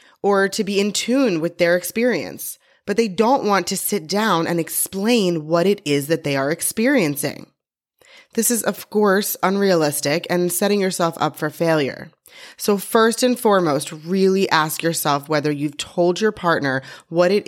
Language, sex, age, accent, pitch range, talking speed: English, female, 20-39, American, 160-225 Hz, 170 wpm